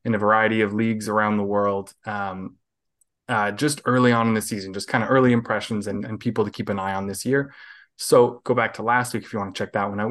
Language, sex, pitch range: English, male, 105-125 Hz